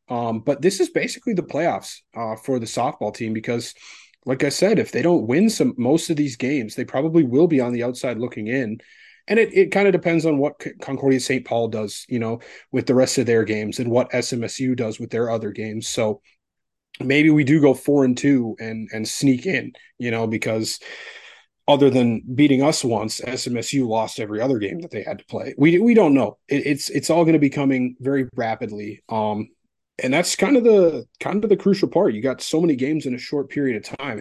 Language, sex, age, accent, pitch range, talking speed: English, male, 30-49, American, 115-145 Hz, 225 wpm